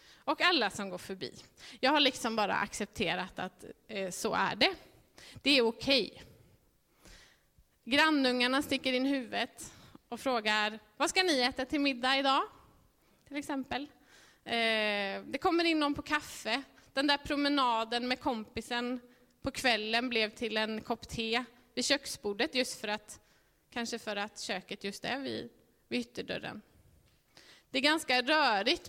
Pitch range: 225-275 Hz